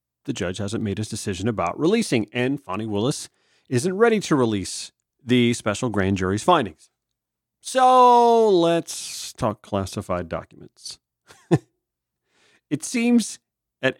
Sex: male